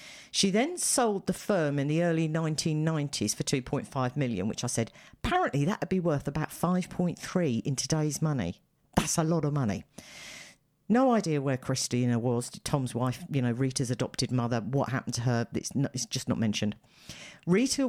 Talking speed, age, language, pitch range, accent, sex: 180 wpm, 50-69, English, 140-185 Hz, British, female